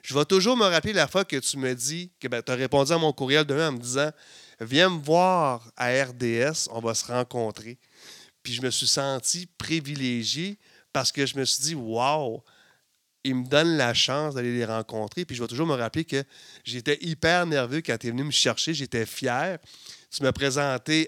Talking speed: 210 wpm